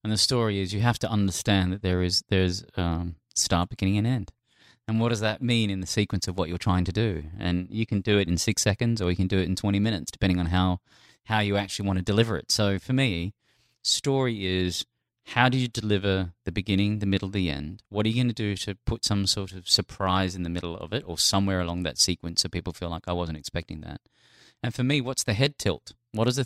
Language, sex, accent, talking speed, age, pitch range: English, male, Australian, 255 wpm, 30-49, 90-120 Hz